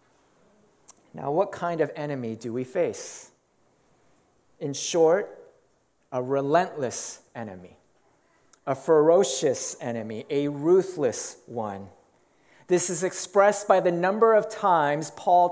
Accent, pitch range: American, 165-210 Hz